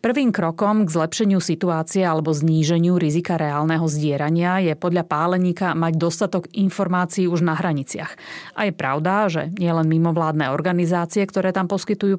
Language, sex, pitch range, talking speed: Slovak, female, 165-190 Hz, 150 wpm